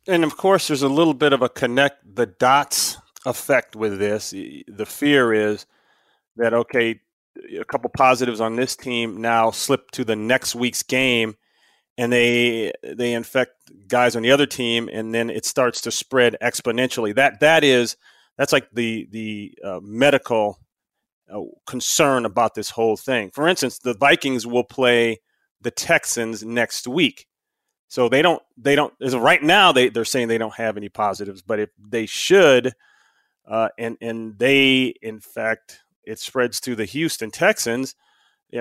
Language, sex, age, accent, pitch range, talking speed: English, male, 30-49, American, 110-130 Hz, 165 wpm